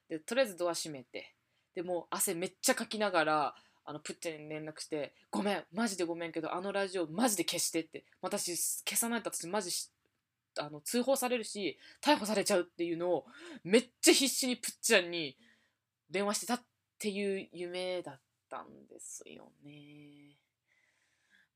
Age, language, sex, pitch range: 20-39, Japanese, female, 165-240 Hz